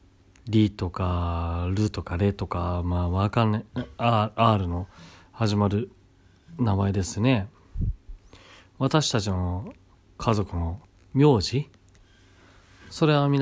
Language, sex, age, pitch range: Japanese, male, 40-59, 95-115 Hz